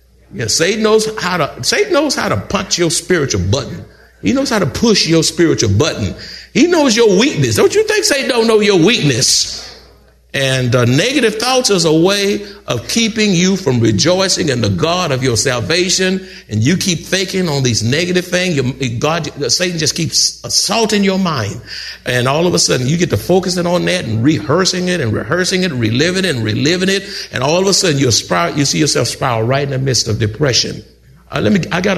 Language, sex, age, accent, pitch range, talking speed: English, male, 60-79, American, 115-180 Hz, 210 wpm